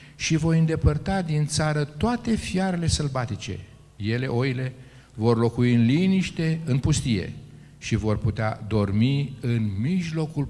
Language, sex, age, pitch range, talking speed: Romanian, male, 50-69, 105-145 Hz, 125 wpm